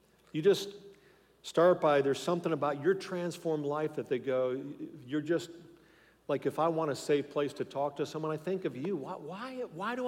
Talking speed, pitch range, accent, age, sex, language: 200 wpm, 120-165 Hz, American, 50-69, male, English